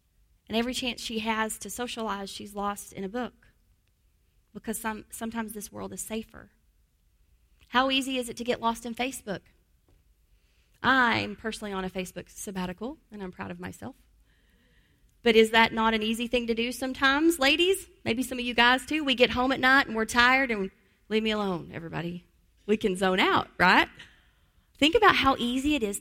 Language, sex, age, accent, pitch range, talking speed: English, female, 30-49, American, 195-245 Hz, 180 wpm